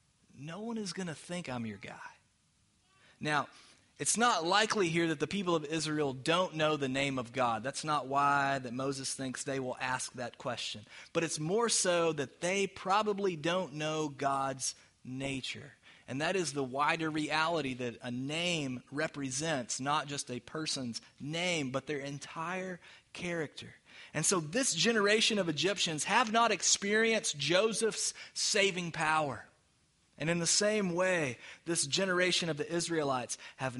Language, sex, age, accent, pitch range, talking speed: English, male, 30-49, American, 135-180 Hz, 160 wpm